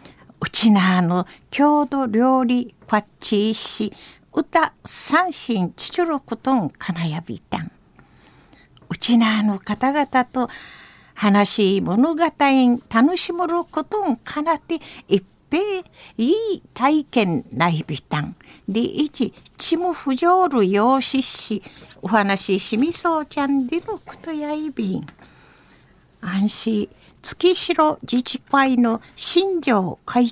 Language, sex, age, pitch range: Japanese, female, 60-79, 210-300 Hz